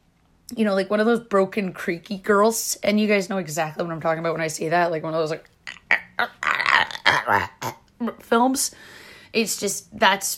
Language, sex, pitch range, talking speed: English, female, 180-235 Hz, 180 wpm